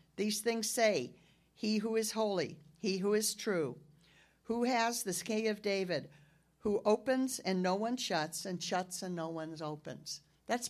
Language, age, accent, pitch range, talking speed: English, 50-69, American, 155-210 Hz, 170 wpm